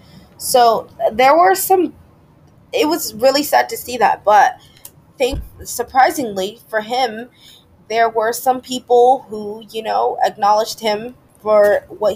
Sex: female